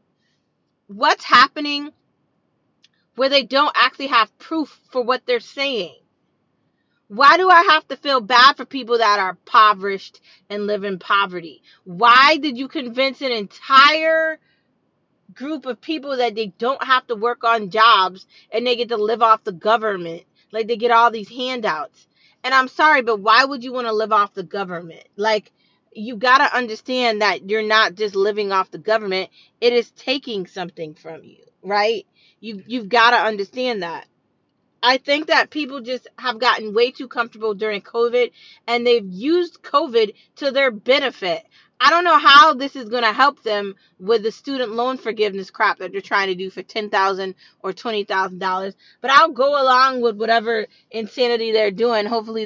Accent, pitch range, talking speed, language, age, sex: American, 200-260 Hz, 175 wpm, English, 30-49, female